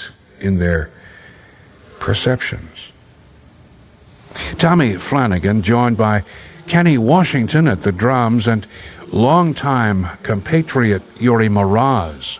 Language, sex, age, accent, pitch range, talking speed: English, male, 60-79, American, 100-145 Hz, 80 wpm